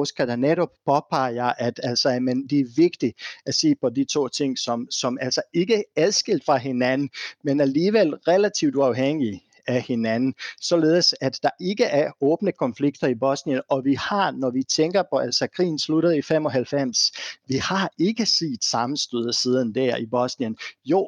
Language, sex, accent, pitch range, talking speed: Danish, male, native, 130-170 Hz, 170 wpm